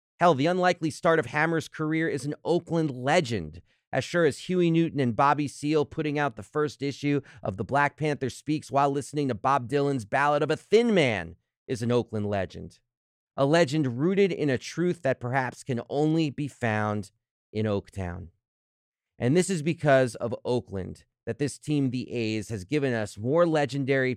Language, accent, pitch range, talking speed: English, American, 110-150 Hz, 180 wpm